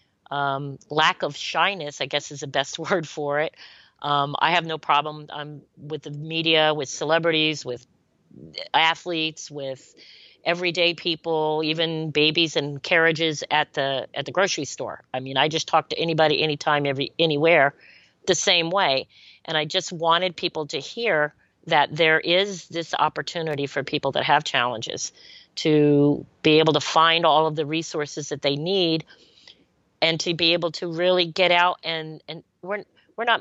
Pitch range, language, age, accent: 140-165 Hz, English, 40-59, American